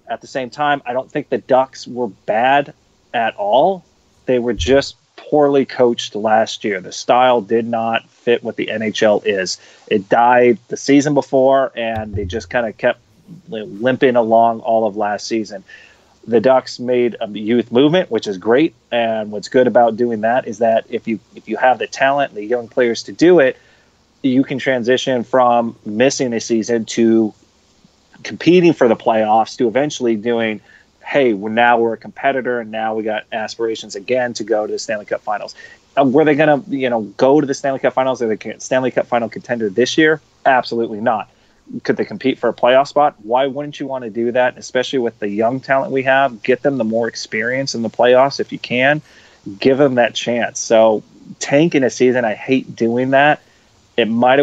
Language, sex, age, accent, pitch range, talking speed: English, male, 30-49, American, 115-135 Hz, 195 wpm